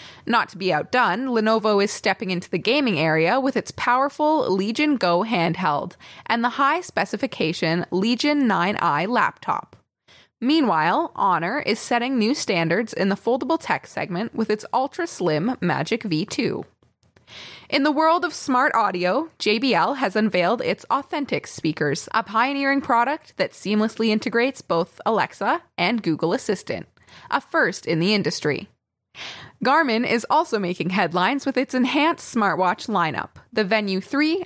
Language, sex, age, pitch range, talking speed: English, female, 20-39, 190-270 Hz, 140 wpm